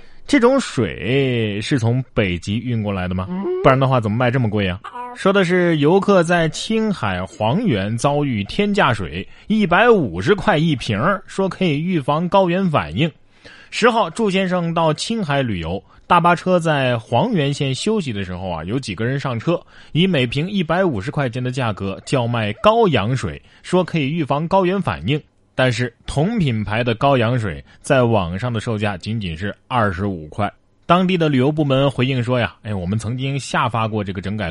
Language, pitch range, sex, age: Chinese, 105-165 Hz, male, 20-39